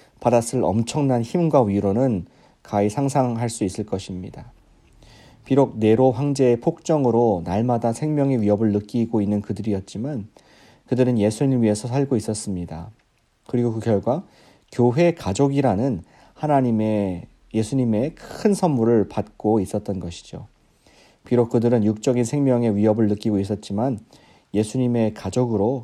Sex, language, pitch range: male, Korean, 105-130 Hz